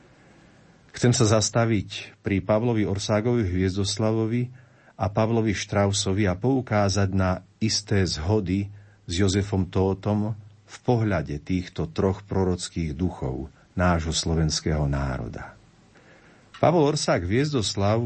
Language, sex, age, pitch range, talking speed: Slovak, male, 50-69, 90-110 Hz, 100 wpm